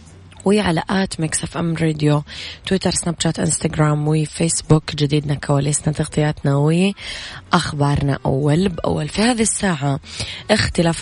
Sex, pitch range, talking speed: female, 150-180 Hz, 115 wpm